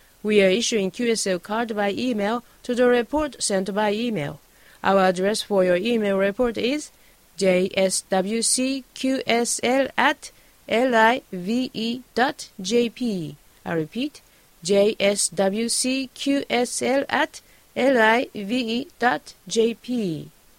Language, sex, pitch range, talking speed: English, female, 205-255 Hz, 70 wpm